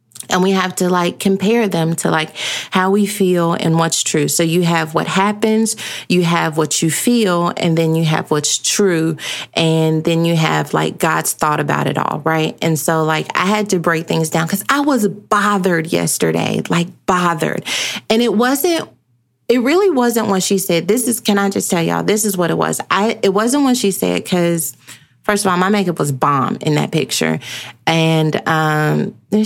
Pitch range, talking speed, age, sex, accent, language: 160-200 Hz, 200 wpm, 30-49, female, American, English